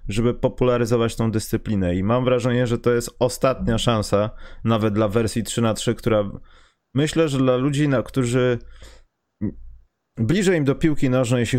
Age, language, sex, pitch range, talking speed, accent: 20-39, Polish, male, 105-140 Hz, 145 wpm, native